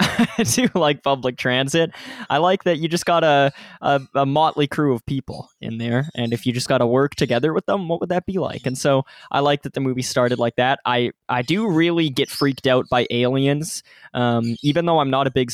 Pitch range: 120-145 Hz